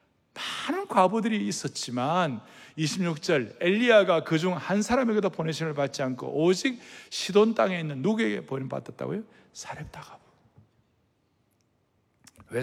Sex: male